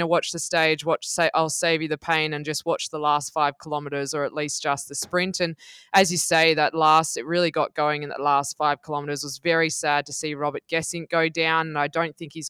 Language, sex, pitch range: English, female, 145-170 Hz